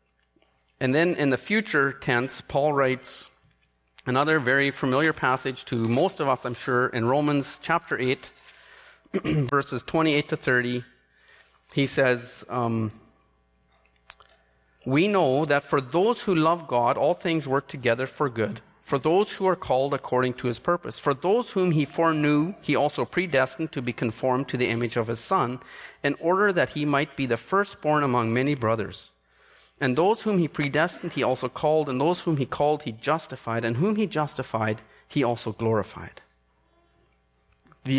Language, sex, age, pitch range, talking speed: English, male, 30-49, 115-155 Hz, 165 wpm